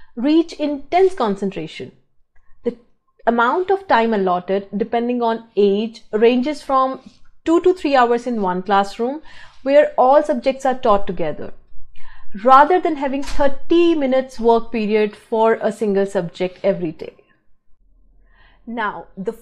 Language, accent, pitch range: English, Indian, 210-285 Hz